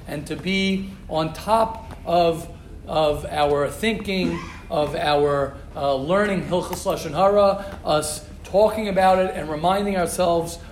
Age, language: 40-59, English